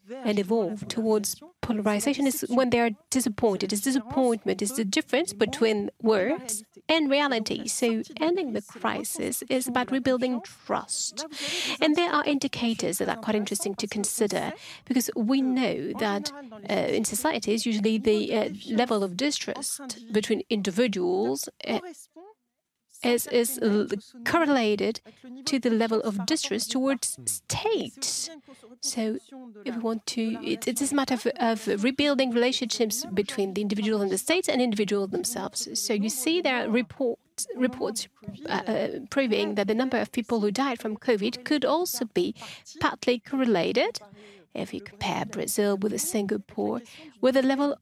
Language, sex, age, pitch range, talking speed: English, female, 30-49, 215-270 Hz, 150 wpm